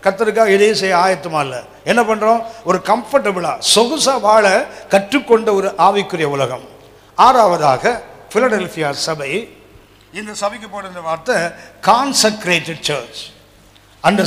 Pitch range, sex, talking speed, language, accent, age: 130-210 Hz, male, 95 wpm, Tamil, native, 50-69